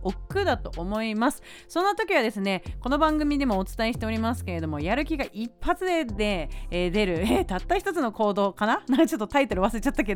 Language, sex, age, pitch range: Japanese, female, 30-49, 190-290 Hz